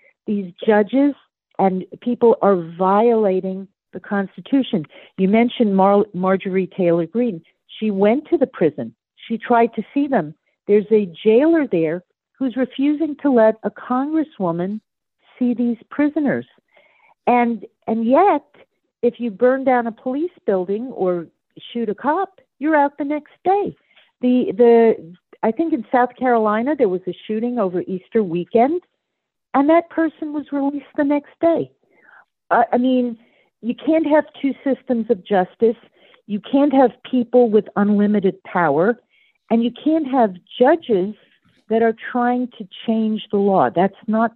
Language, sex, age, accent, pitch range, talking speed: English, female, 50-69, American, 195-265 Hz, 145 wpm